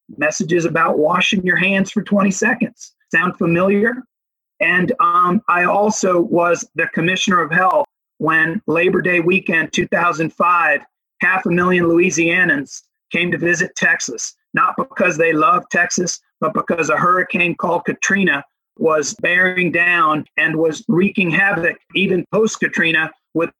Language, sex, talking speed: English, male, 135 wpm